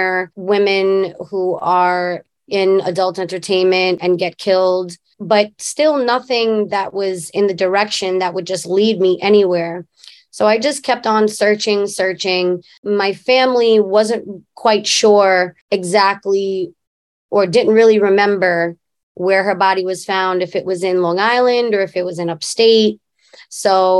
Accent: American